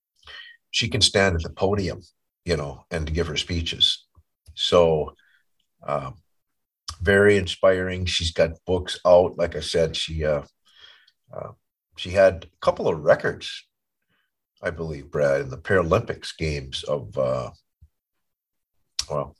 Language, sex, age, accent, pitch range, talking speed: English, male, 50-69, American, 85-105 Hz, 135 wpm